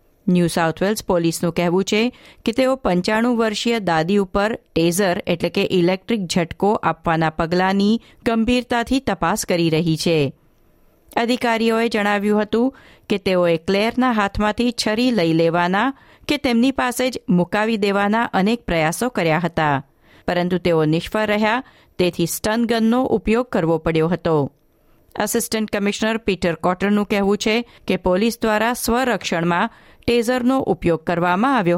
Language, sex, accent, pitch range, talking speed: Gujarati, female, native, 175-235 Hz, 130 wpm